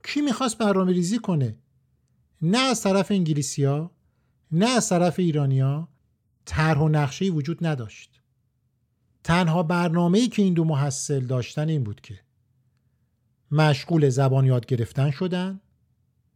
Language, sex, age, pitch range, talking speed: Persian, male, 50-69, 120-175 Hz, 125 wpm